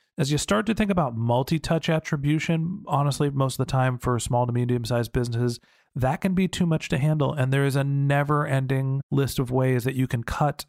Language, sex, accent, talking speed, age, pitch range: English, male, American, 220 wpm, 40-59, 120-160 Hz